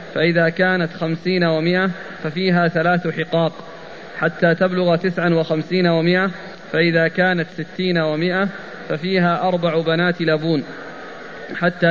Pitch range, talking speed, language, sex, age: 160-185 Hz, 105 wpm, Arabic, male, 20-39